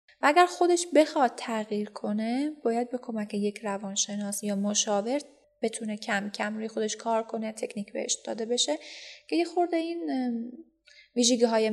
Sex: female